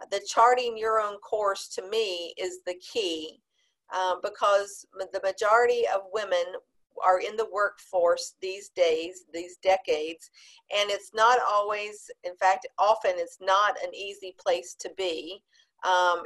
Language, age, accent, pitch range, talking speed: English, 50-69, American, 180-250 Hz, 145 wpm